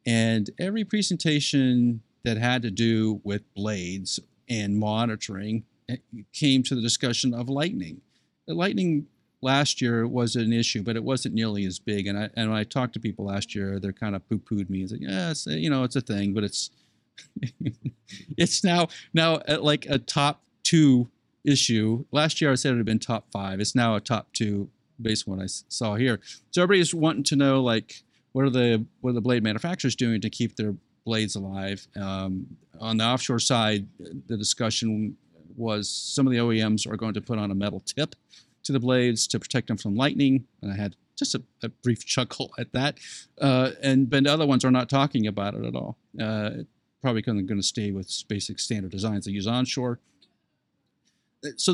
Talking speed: 195 wpm